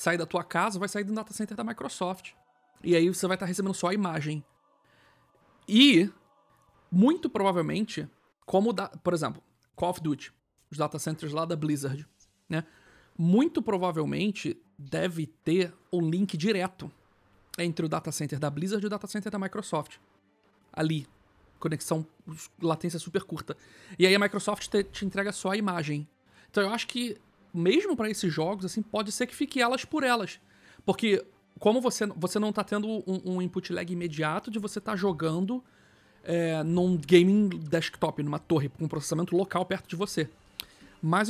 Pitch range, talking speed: 155-205 Hz, 170 wpm